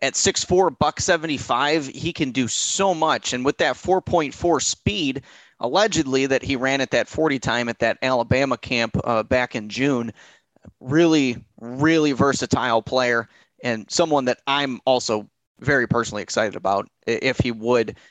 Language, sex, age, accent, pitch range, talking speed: English, male, 30-49, American, 125-160 Hz, 150 wpm